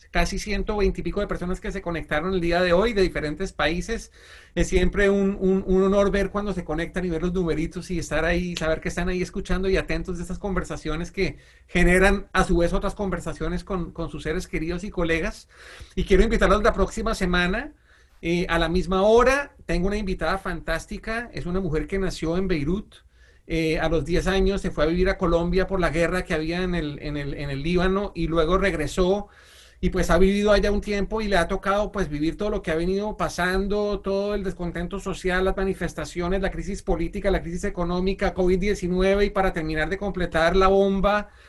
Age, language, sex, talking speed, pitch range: 40-59, Spanish, male, 210 wpm, 170-195 Hz